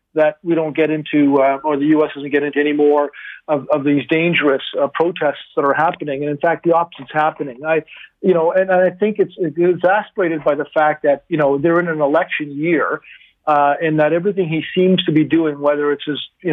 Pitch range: 145-170 Hz